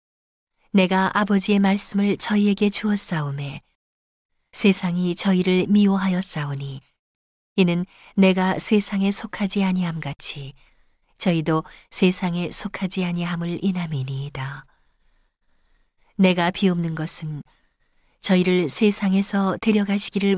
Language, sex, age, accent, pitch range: Korean, female, 40-59, native, 150-195 Hz